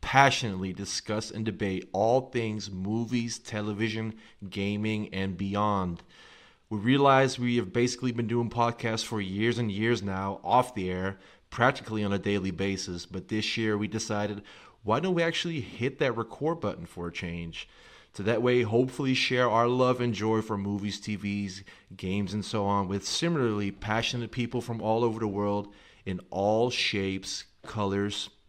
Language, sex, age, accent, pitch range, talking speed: English, male, 30-49, American, 100-120 Hz, 160 wpm